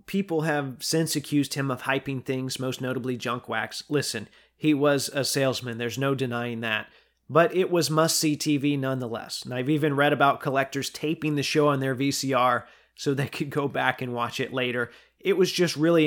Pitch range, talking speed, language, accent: 130-155 Hz, 195 wpm, English, American